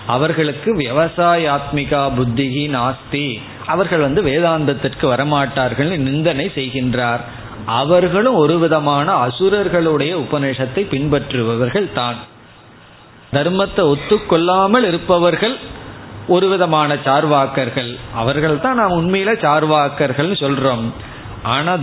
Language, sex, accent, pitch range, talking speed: Tamil, male, native, 125-165 Hz, 75 wpm